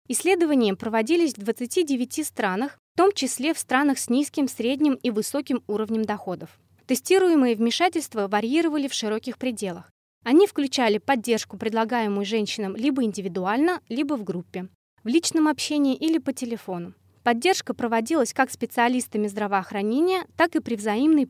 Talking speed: 135 wpm